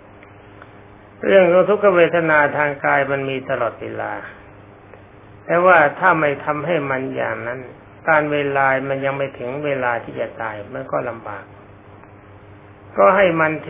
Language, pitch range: Thai, 100-160 Hz